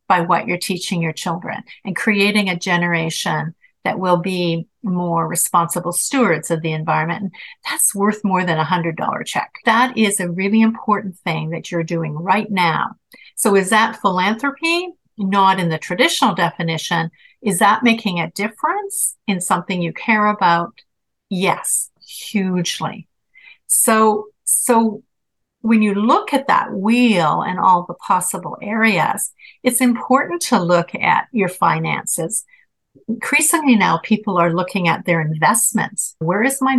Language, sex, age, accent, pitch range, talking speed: English, female, 50-69, American, 175-225 Hz, 145 wpm